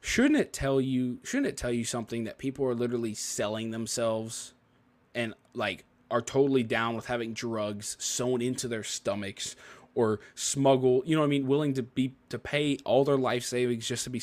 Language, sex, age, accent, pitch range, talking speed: English, male, 20-39, American, 115-140 Hz, 195 wpm